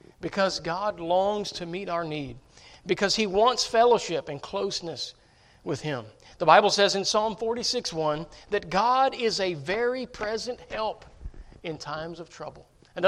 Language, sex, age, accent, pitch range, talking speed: English, male, 50-69, American, 170-235 Hz, 150 wpm